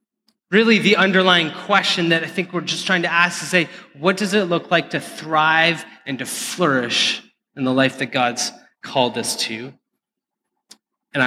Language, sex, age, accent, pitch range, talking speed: English, male, 30-49, American, 135-185 Hz, 175 wpm